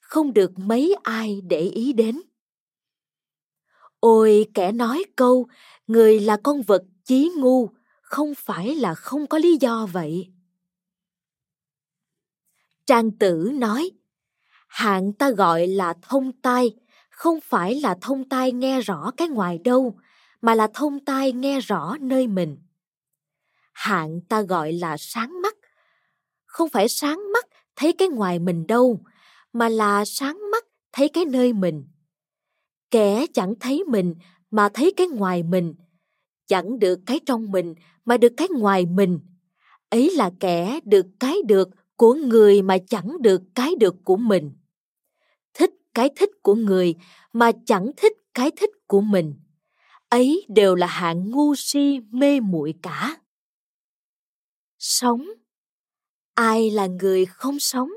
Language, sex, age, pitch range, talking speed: Vietnamese, female, 20-39, 185-270 Hz, 140 wpm